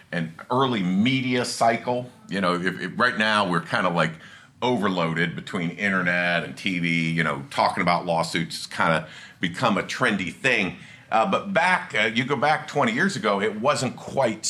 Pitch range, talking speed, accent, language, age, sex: 90-130 Hz, 180 wpm, American, English, 50-69, male